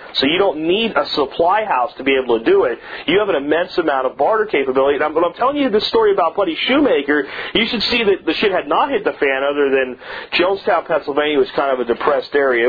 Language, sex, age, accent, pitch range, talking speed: English, male, 40-59, American, 130-220 Hz, 245 wpm